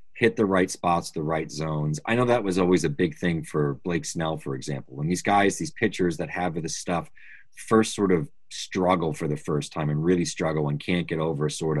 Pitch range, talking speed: 75-90 Hz, 230 wpm